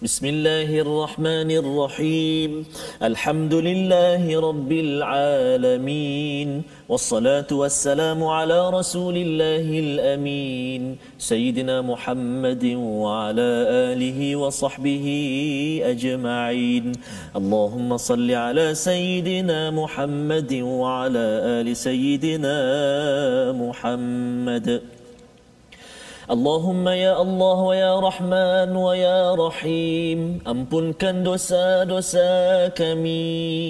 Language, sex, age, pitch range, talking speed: Malayalam, male, 40-59, 145-185 Hz, 60 wpm